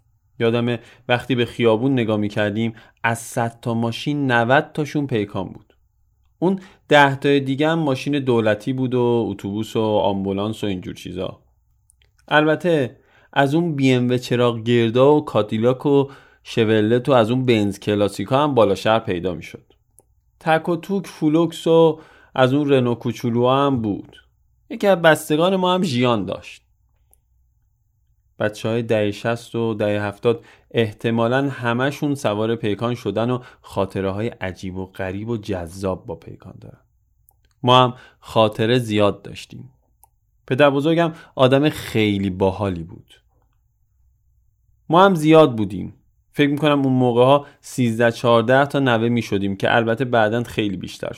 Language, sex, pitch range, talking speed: Persian, male, 105-140 Hz, 130 wpm